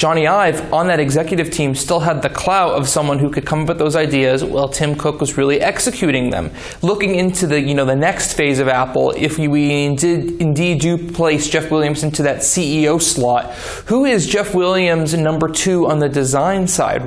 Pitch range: 135-160 Hz